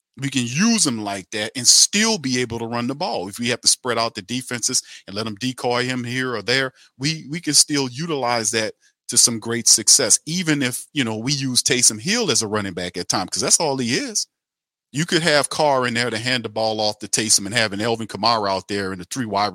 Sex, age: male, 40-59